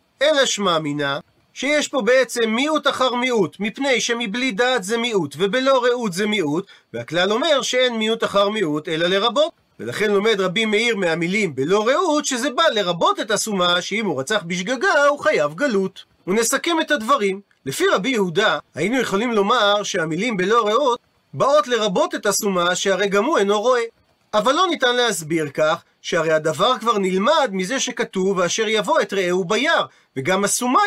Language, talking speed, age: Hebrew, 160 wpm, 40-59